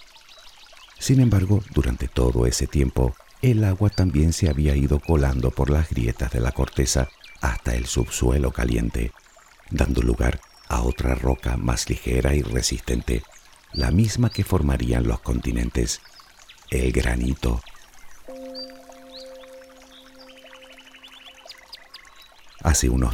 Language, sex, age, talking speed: Spanish, male, 50-69, 110 wpm